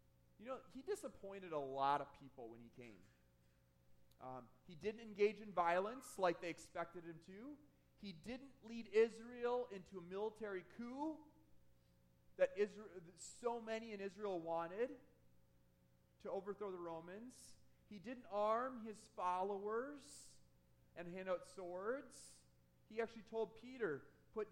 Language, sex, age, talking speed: English, male, 30-49, 135 wpm